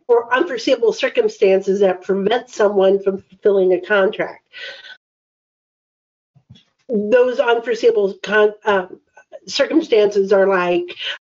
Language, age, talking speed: English, 50-69, 85 wpm